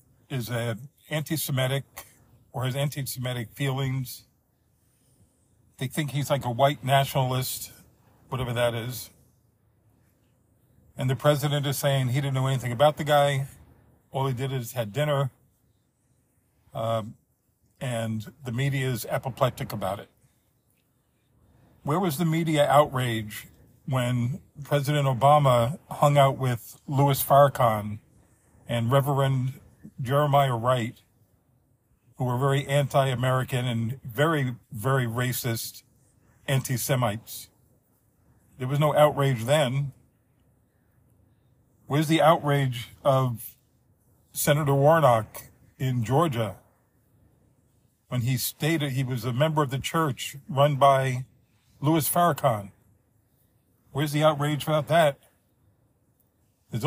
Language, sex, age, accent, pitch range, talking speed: English, male, 50-69, American, 120-140 Hz, 110 wpm